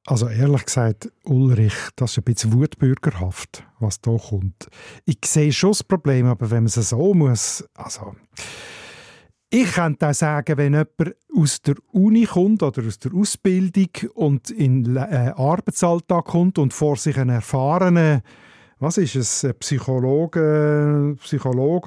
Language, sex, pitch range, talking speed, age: German, male, 125-165 Hz, 145 wpm, 50-69